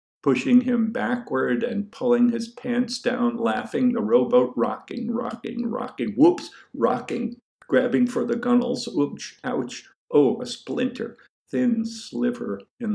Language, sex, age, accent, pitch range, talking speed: English, male, 50-69, American, 220-245 Hz, 130 wpm